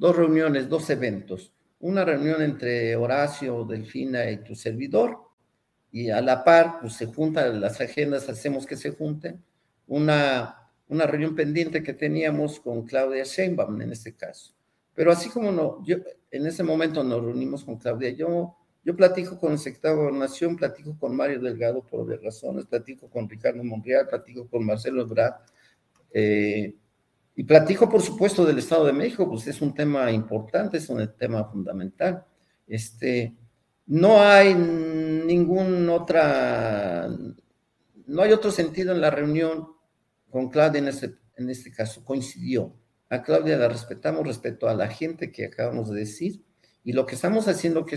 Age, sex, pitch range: 50-69, male, 115-165 Hz